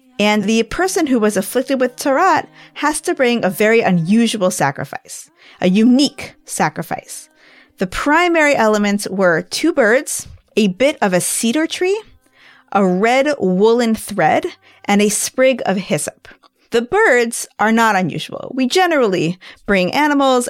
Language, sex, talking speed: English, female, 140 wpm